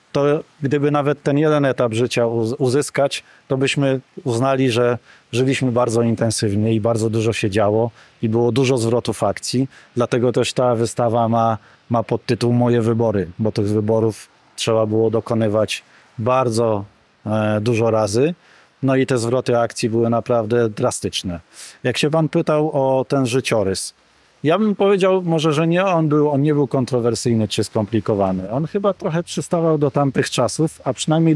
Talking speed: 155 wpm